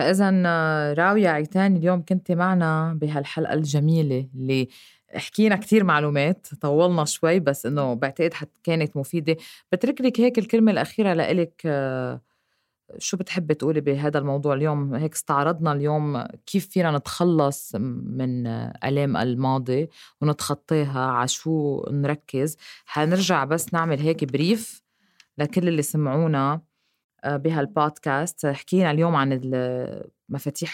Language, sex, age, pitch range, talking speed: Arabic, female, 20-39, 140-170 Hz, 115 wpm